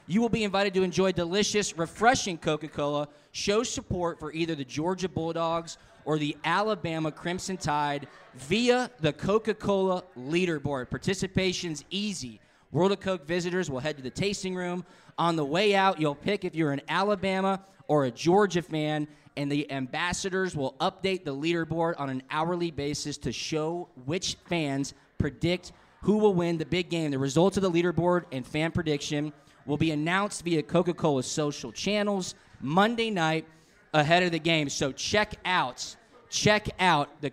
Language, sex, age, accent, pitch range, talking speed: English, male, 20-39, American, 150-195 Hz, 160 wpm